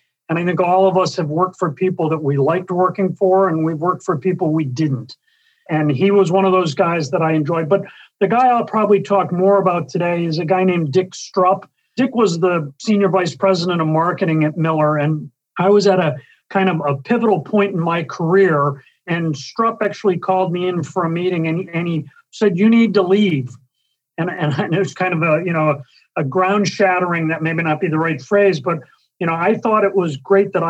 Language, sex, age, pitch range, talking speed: English, male, 40-59, 160-195 Hz, 225 wpm